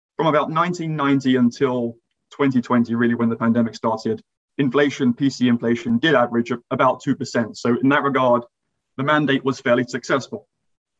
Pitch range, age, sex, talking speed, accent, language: 120-140 Hz, 20-39, male, 140 wpm, British, English